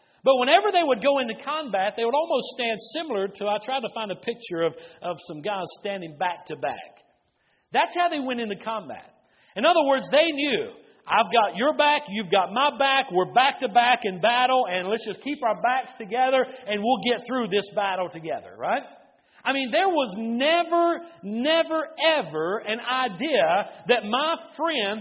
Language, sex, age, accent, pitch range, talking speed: English, male, 50-69, American, 205-300 Hz, 190 wpm